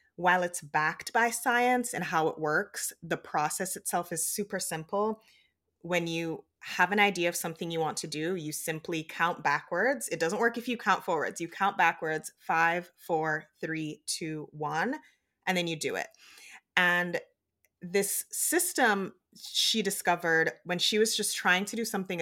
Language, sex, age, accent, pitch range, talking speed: English, female, 20-39, American, 160-200 Hz, 170 wpm